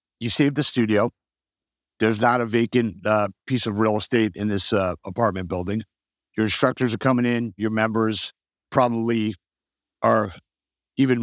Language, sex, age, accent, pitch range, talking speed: English, male, 50-69, American, 105-135 Hz, 150 wpm